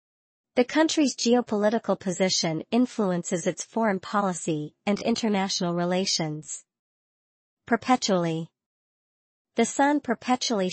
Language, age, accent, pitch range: Chinese, 40-59, American, 175-225 Hz